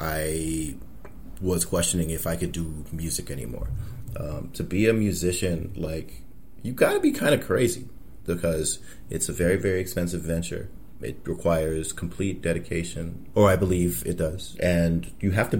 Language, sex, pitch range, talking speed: English, male, 80-95 Hz, 160 wpm